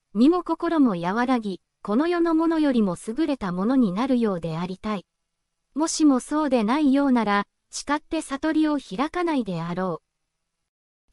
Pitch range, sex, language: 225-305 Hz, female, Japanese